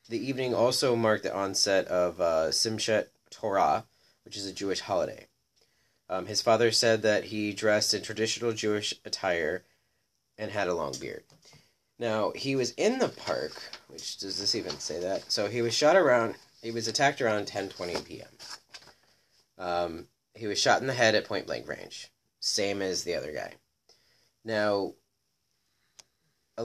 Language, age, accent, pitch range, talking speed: English, 30-49, American, 100-120 Hz, 160 wpm